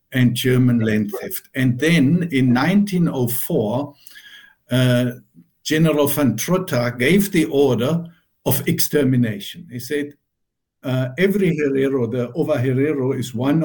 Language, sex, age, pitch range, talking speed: English, male, 60-79, 125-160 Hz, 120 wpm